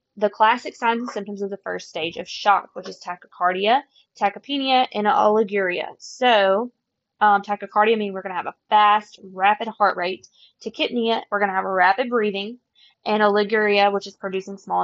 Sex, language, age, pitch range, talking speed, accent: female, English, 20-39, 190-225 Hz, 180 wpm, American